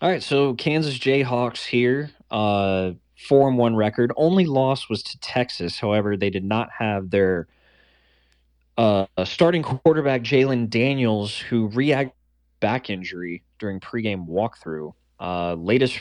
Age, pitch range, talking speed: 20-39, 95-125 Hz, 130 wpm